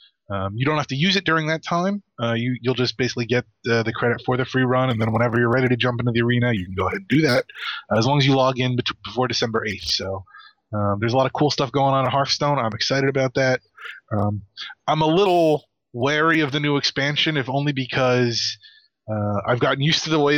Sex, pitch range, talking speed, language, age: male, 110-135 Hz, 250 wpm, English, 20-39